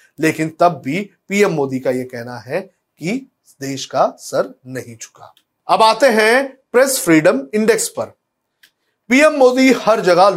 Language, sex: Hindi, male